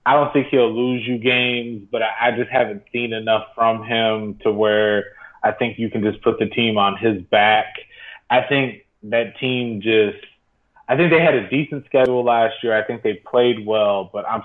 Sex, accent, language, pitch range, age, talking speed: male, American, English, 105-125 Hz, 20-39, 205 wpm